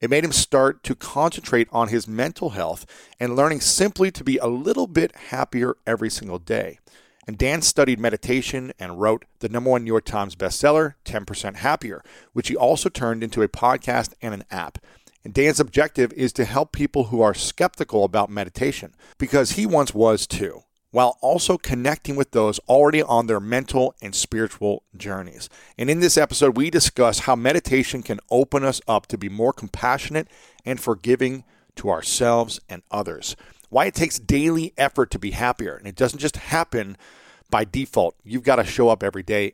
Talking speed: 180 wpm